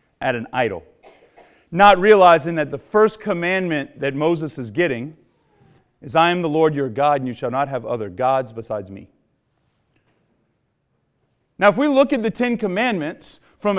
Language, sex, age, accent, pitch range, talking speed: English, male, 40-59, American, 155-210 Hz, 165 wpm